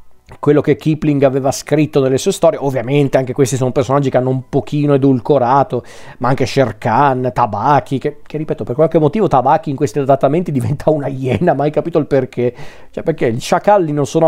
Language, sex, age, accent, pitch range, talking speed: Italian, male, 40-59, native, 130-165 Hz, 195 wpm